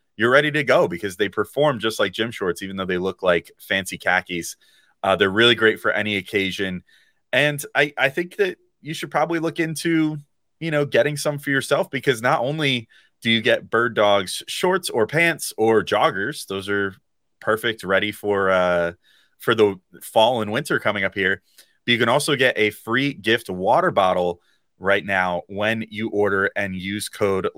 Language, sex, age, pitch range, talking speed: English, male, 30-49, 95-140 Hz, 185 wpm